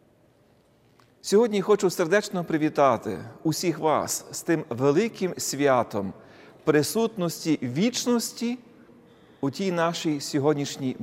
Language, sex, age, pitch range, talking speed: Russian, male, 40-59, 125-180 Hz, 95 wpm